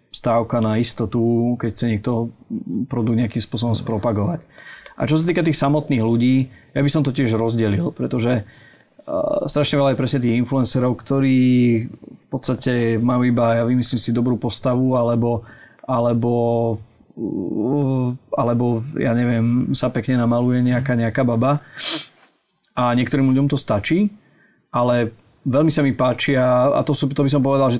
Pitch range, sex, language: 120-135 Hz, male, Slovak